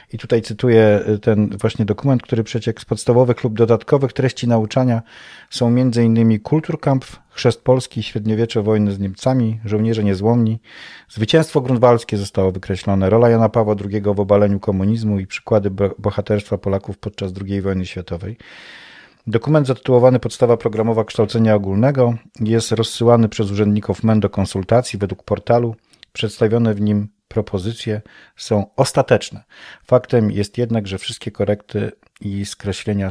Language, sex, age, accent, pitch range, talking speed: Polish, male, 40-59, native, 100-120 Hz, 130 wpm